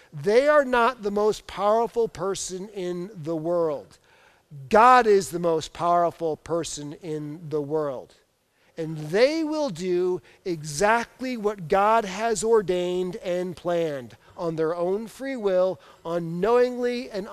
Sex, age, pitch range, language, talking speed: male, 50-69, 170-225 Hz, English, 130 wpm